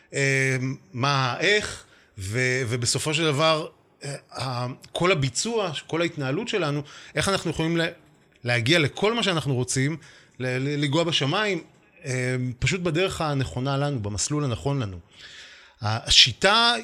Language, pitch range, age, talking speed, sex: Hebrew, 120-160 Hz, 30-49, 105 wpm, male